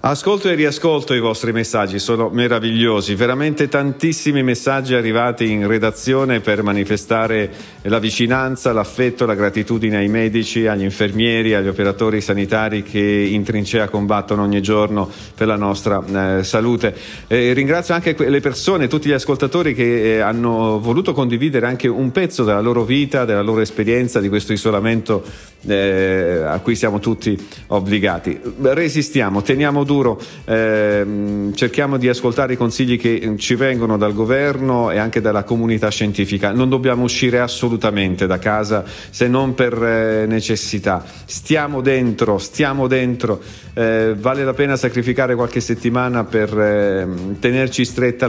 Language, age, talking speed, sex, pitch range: Italian, 50-69, 145 wpm, male, 105-130 Hz